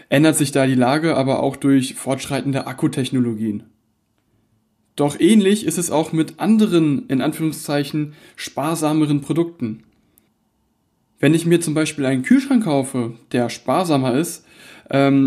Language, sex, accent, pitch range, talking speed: German, male, German, 125-155 Hz, 130 wpm